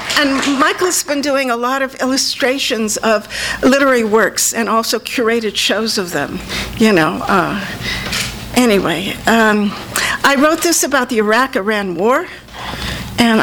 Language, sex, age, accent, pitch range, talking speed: English, female, 50-69, American, 225-275 Hz, 135 wpm